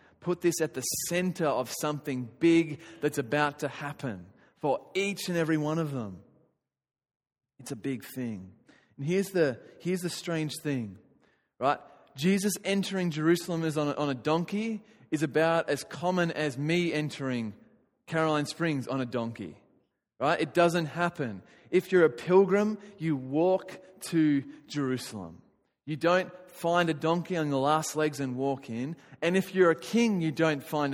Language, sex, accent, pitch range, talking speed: English, male, Australian, 140-175 Hz, 165 wpm